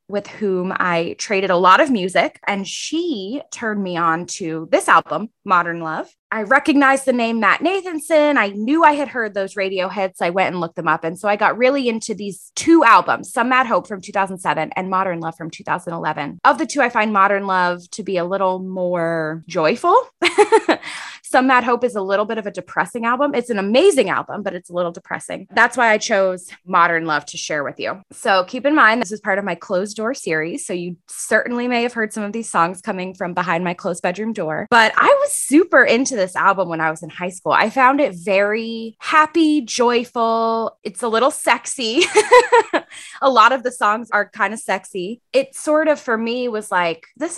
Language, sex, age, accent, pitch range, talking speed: English, female, 20-39, American, 185-255 Hz, 215 wpm